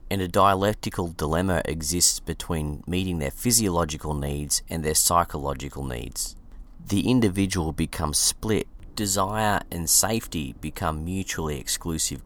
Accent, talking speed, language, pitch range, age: Australian, 115 wpm, English, 75-95 Hz, 30-49